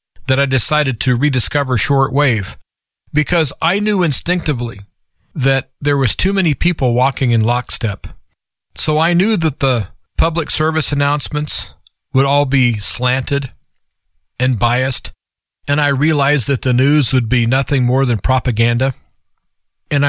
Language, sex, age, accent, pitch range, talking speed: English, male, 40-59, American, 120-145 Hz, 135 wpm